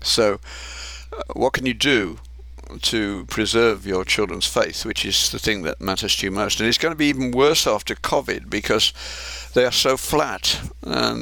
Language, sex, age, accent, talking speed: English, male, 60-79, British, 185 wpm